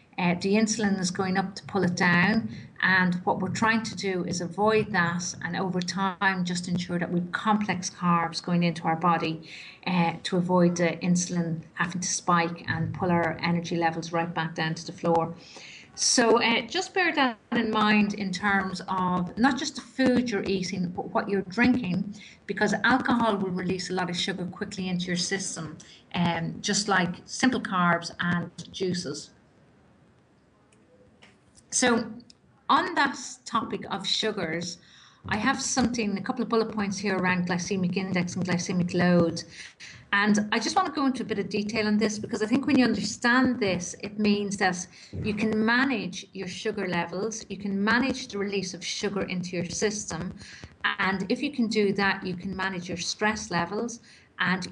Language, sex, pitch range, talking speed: English, female, 175-220 Hz, 180 wpm